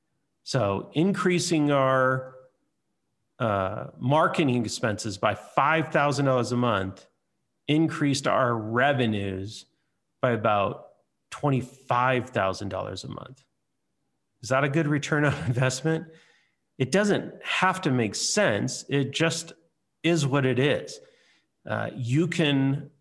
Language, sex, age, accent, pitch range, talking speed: English, male, 40-59, American, 125-165 Hz, 105 wpm